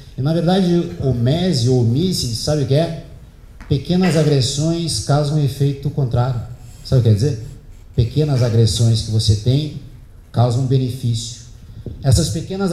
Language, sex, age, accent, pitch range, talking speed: Portuguese, male, 50-69, Brazilian, 115-150 Hz, 155 wpm